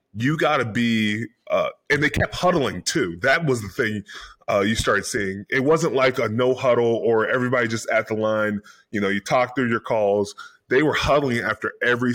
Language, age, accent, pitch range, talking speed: English, 20-39, American, 110-135 Hz, 205 wpm